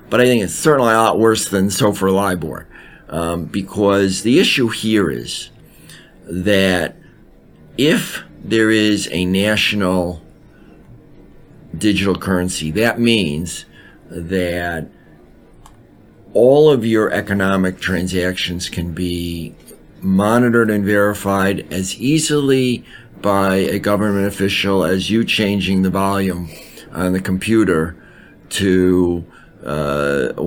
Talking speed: 110 wpm